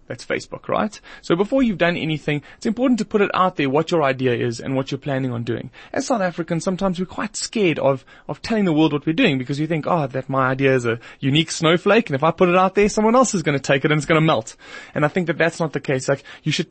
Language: English